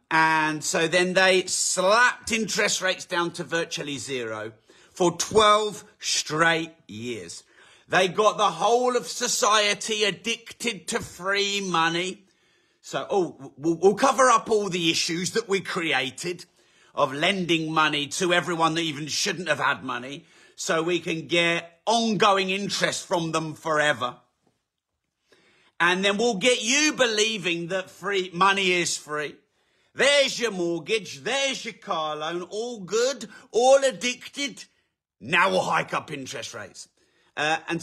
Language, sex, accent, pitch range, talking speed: English, male, British, 165-215 Hz, 135 wpm